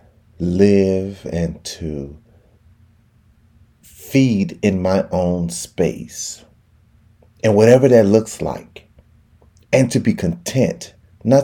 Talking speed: 95 wpm